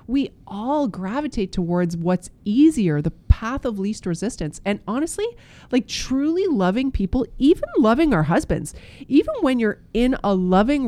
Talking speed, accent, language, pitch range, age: 150 wpm, American, English, 195-270 Hz, 30-49